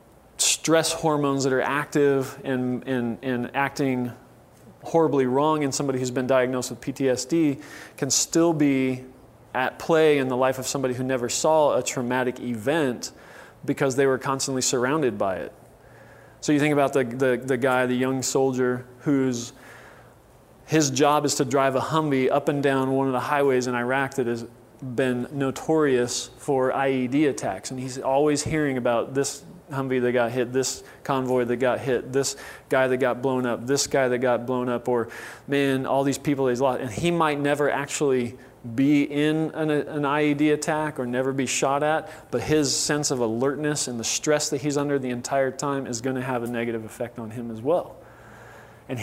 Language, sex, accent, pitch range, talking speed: English, male, American, 125-145 Hz, 185 wpm